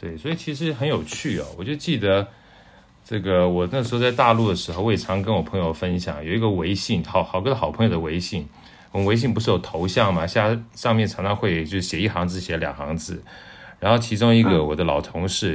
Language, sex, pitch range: Chinese, male, 90-120 Hz